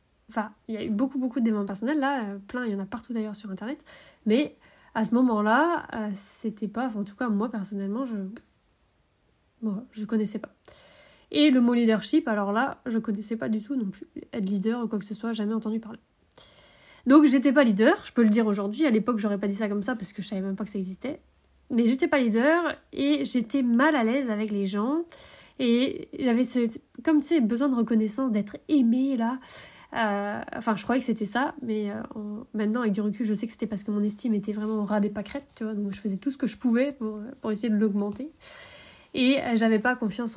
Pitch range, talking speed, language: 210-255 Hz, 240 wpm, French